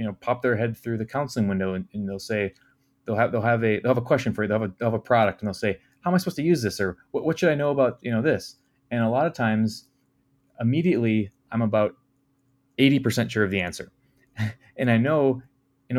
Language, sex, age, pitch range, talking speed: English, male, 20-39, 110-130 Hz, 250 wpm